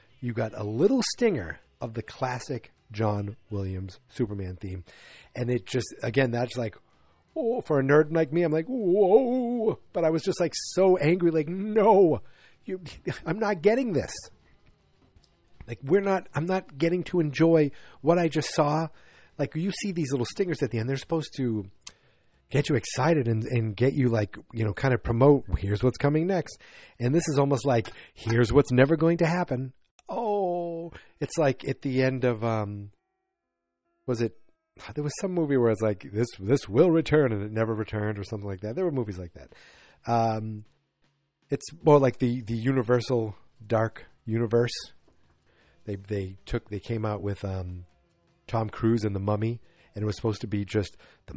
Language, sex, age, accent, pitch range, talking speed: English, male, 40-59, American, 105-155 Hz, 180 wpm